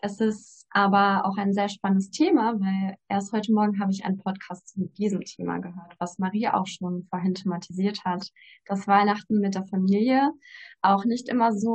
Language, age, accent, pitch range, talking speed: German, 20-39, German, 190-210 Hz, 185 wpm